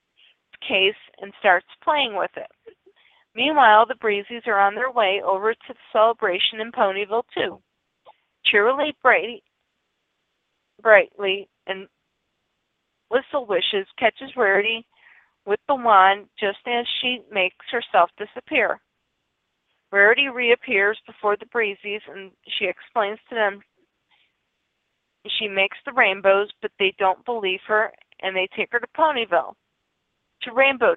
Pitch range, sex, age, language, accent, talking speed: 195-255 Hz, female, 40-59, English, American, 120 wpm